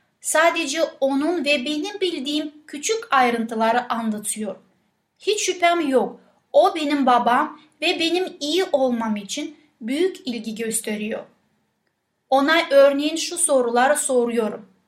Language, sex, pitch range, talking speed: Turkish, female, 235-305 Hz, 110 wpm